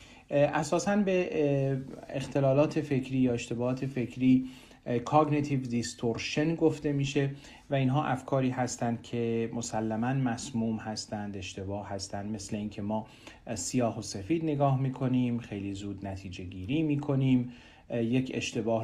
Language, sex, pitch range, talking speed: Persian, male, 105-130 Hz, 115 wpm